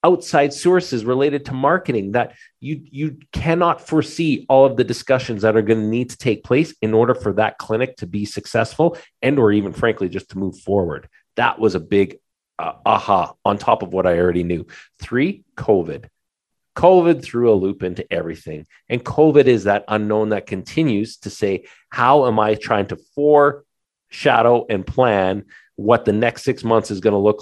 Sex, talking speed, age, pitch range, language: male, 190 wpm, 40-59, 95-120 Hz, English